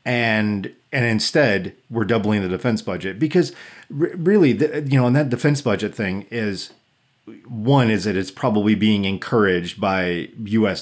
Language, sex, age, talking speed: English, male, 40-59, 160 wpm